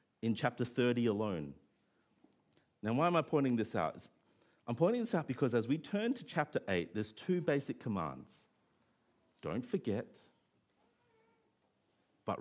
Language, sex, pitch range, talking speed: English, male, 110-160 Hz, 140 wpm